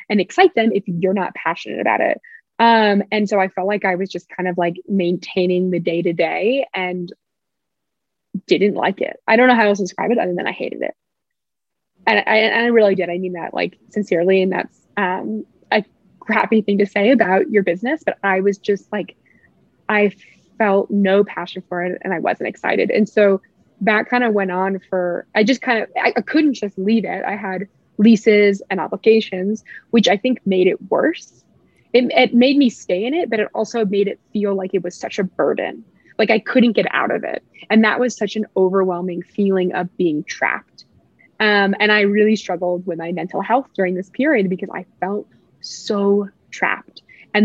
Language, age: English, 20-39